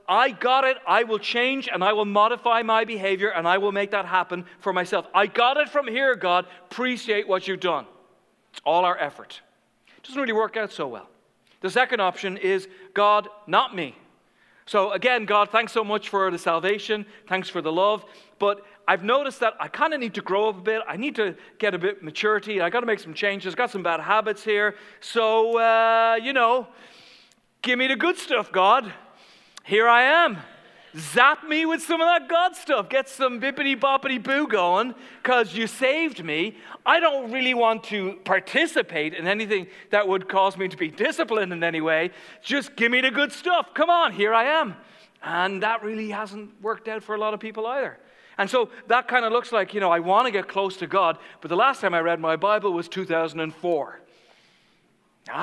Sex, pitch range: male, 195-250 Hz